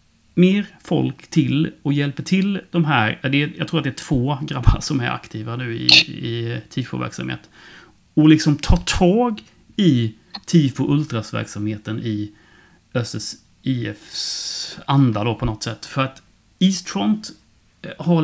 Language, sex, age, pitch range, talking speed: Swedish, male, 30-49, 110-160 Hz, 140 wpm